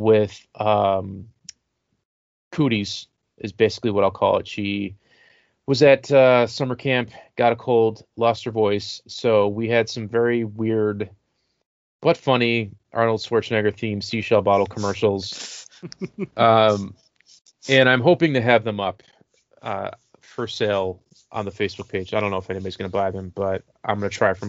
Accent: American